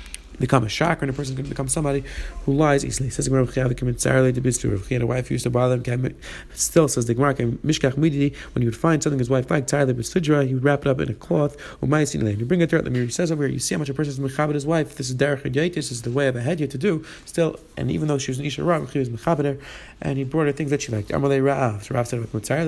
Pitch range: 120-145 Hz